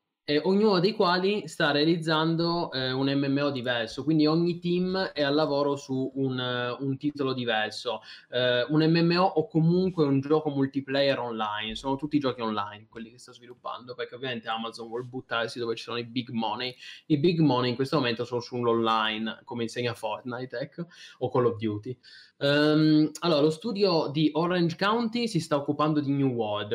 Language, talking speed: Italian, 175 wpm